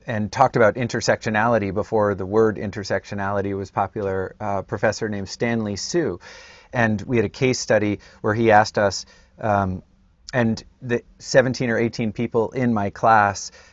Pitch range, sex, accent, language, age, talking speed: 100-115 Hz, male, American, English, 30-49, 155 wpm